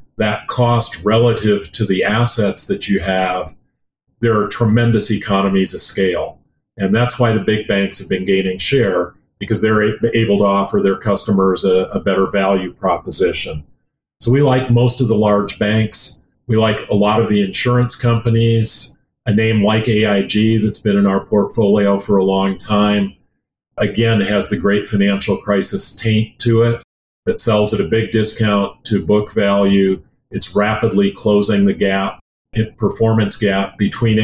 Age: 50-69